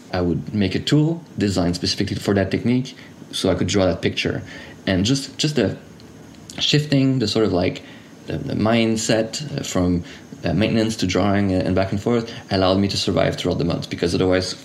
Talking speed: 185 wpm